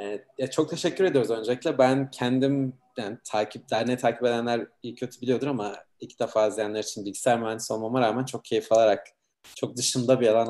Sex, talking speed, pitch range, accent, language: male, 170 wpm, 105-130 Hz, native, Turkish